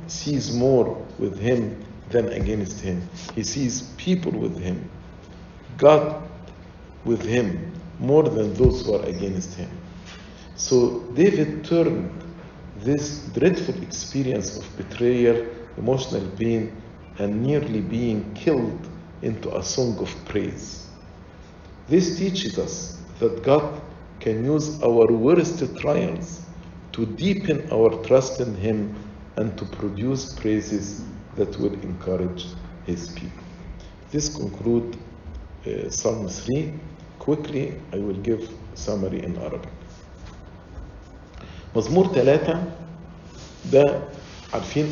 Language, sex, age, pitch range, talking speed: English, male, 50-69, 95-140 Hz, 110 wpm